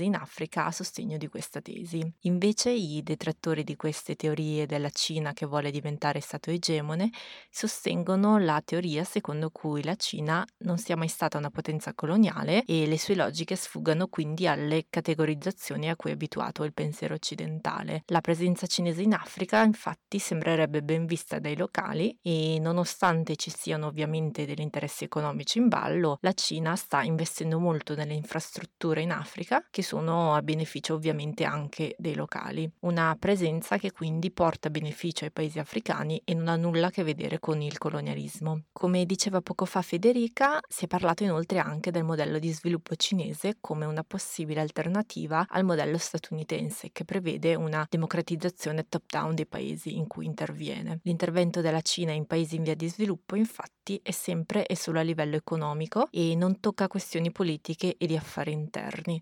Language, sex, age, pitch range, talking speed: Italian, female, 20-39, 155-180 Hz, 165 wpm